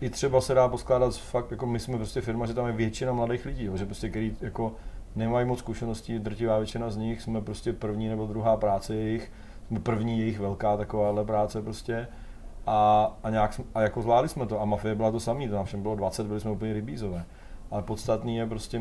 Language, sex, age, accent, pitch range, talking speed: Czech, male, 30-49, native, 100-115 Hz, 215 wpm